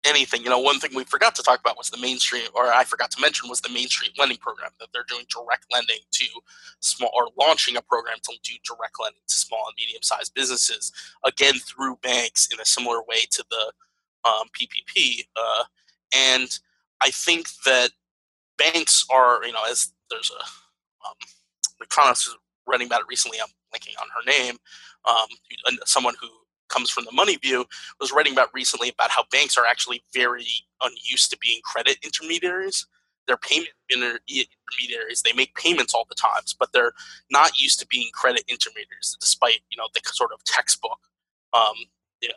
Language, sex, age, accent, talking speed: English, male, 20-39, American, 180 wpm